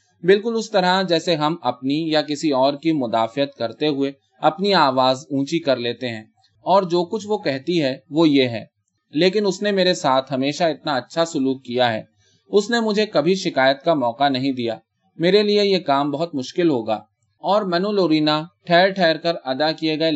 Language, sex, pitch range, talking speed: Urdu, male, 125-175 Hz, 190 wpm